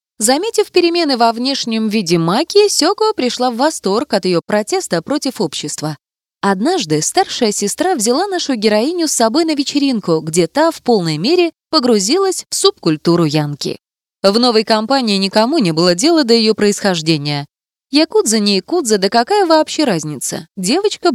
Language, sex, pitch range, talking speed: Russian, female, 190-300 Hz, 150 wpm